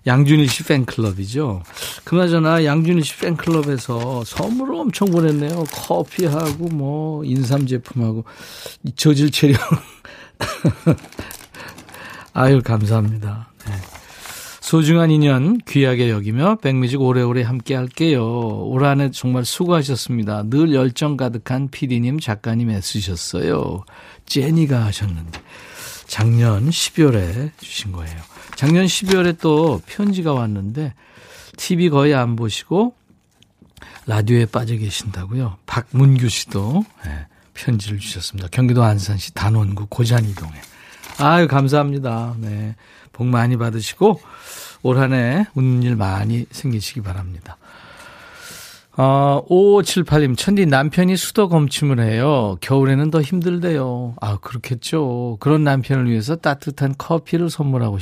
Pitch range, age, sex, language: 110-155 Hz, 50-69, male, Korean